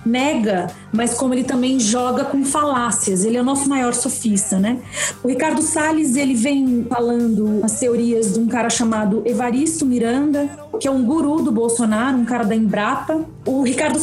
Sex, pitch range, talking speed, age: female, 220-265 Hz, 175 wpm, 30-49